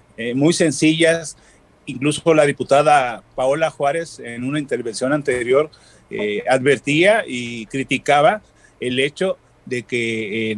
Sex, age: male, 40-59